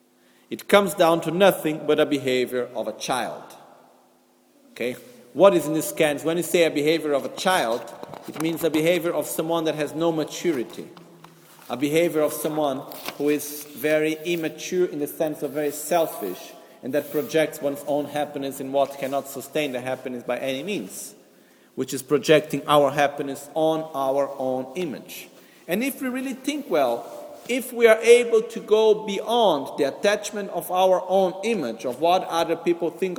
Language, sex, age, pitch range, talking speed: Italian, male, 40-59, 140-190 Hz, 175 wpm